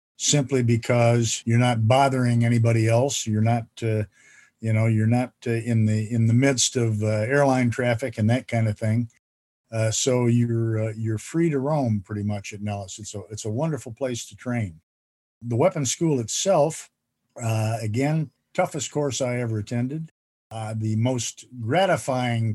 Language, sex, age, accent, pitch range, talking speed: English, male, 50-69, American, 110-125 Hz, 175 wpm